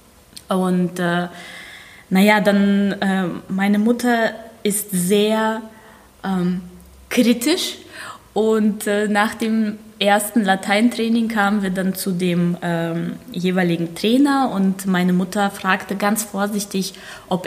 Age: 20-39